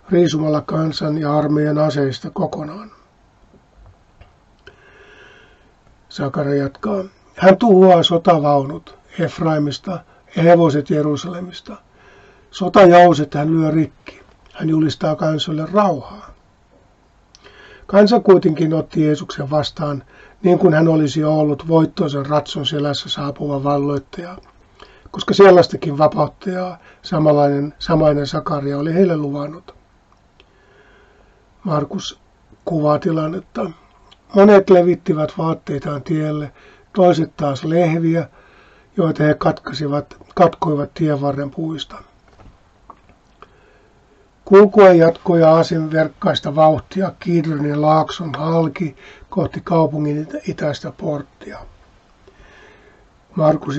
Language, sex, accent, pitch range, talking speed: Finnish, male, native, 145-175 Hz, 85 wpm